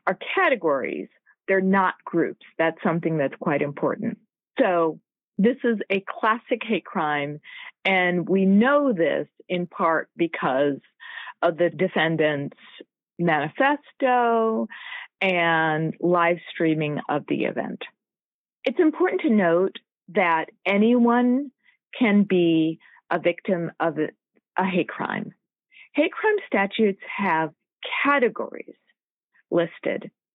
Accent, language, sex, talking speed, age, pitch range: American, English, female, 110 wpm, 40-59, 170-225 Hz